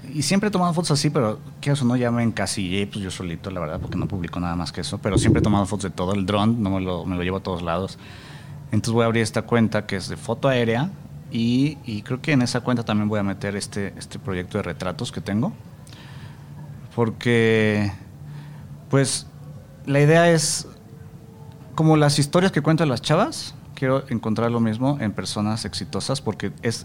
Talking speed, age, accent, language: 210 wpm, 30-49, Mexican, Spanish